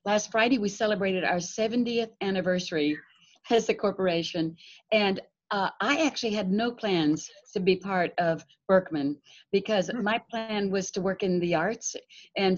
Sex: female